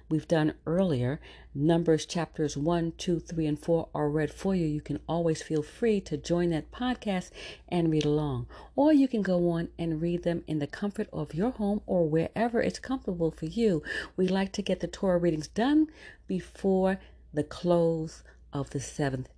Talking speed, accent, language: 185 wpm, American, English